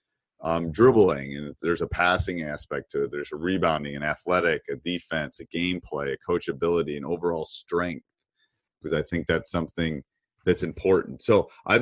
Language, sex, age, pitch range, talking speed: English, male, 30-49, 75-90 Hz, 170 wpm